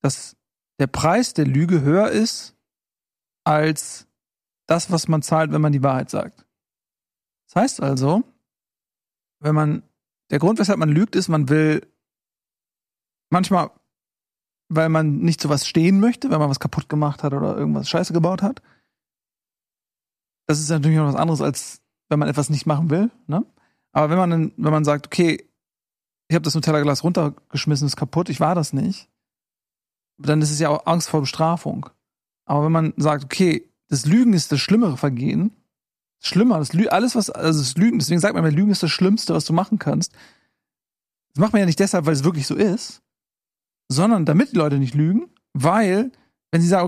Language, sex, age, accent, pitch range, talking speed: German, male, 40-59, German, 150-190 Hz, 180 wpm